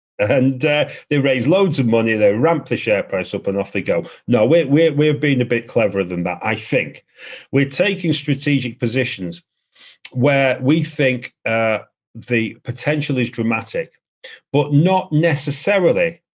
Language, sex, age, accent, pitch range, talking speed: English, male, 40-59, British, 105-140 Hz, 160 wpm